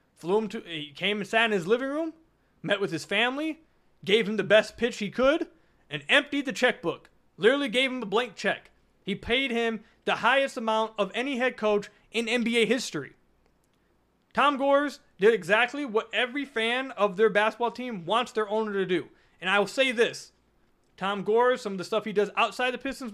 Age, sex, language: 30-49, male, English